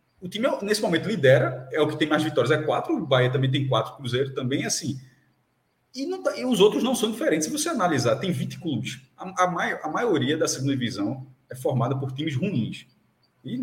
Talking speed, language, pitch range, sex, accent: 210 wpm, Portuguese, 135-200 Hz, male, Brazilian